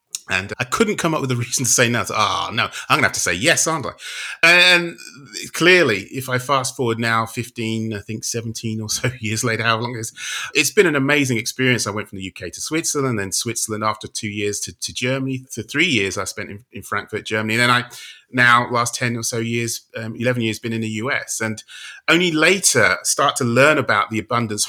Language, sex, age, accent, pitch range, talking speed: English, male, 30-49, British, 105-130 Hz, 235 wpm